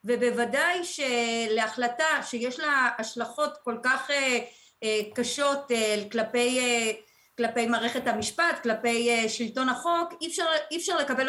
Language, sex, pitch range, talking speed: Hebrew, female, 230-270 Hz, 130 wpm